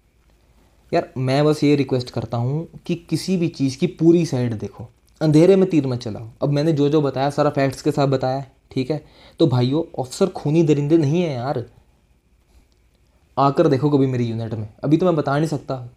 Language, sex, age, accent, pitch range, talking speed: Hindi, male, 20-39, native, 125-155 Hz, 195 wpm